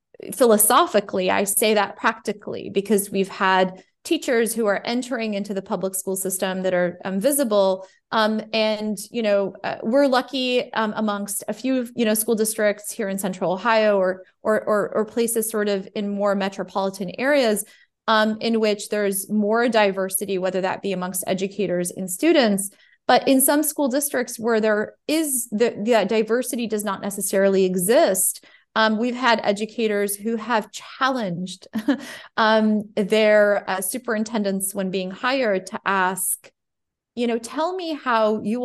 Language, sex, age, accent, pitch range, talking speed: English, female, 20-39, American, 195-230 Hz, 155 wpm